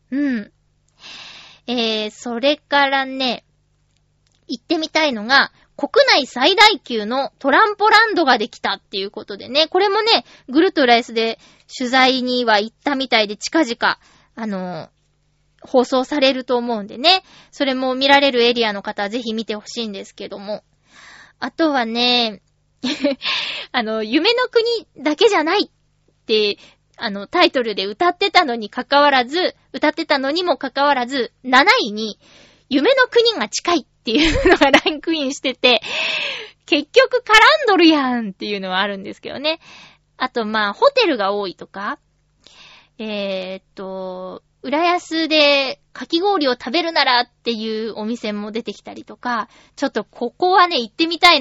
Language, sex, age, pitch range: Japanese, female, 20-39, 225-320 Hz